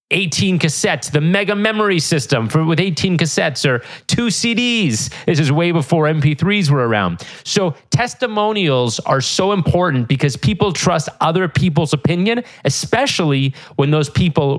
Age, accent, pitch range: 30-49, American, 140-195 Hz